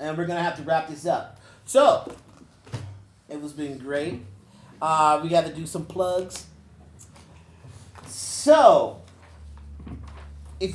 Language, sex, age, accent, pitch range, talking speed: English, male, 30-49, American, 120-170 Hz, 130 wpm